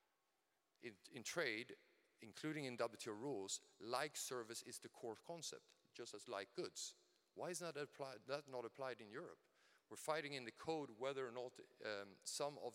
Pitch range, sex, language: 115-155 Hz, male, English